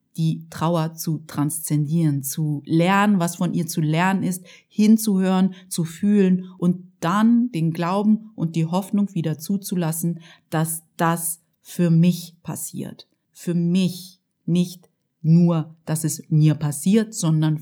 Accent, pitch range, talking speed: German, 160-190 Hz, 130 wpm